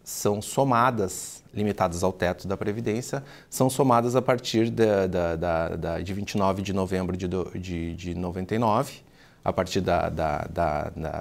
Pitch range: 95-135 Hz